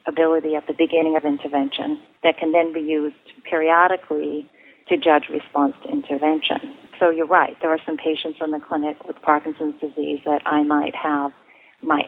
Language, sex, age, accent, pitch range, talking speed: English, female, 40-59, American, 145-165 Hz, 175 wpm